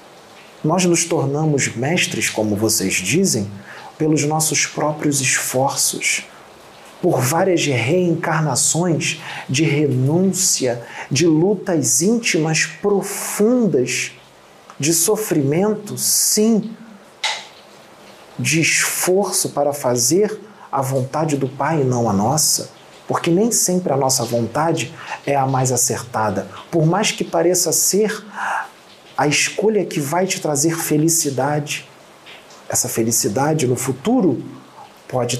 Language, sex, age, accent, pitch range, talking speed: English, male, 40-59, Brazilian, 125-170 Hz, 105 wpm